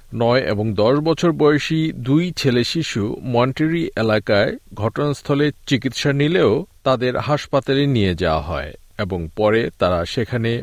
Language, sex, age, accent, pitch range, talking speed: Bengali, male, 50-69, native, 105-150 Hz, 125 wpm